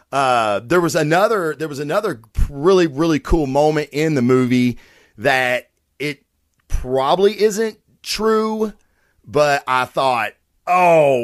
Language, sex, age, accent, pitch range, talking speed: English, male, 40-59, American, 115-150 Hz, 125 wpm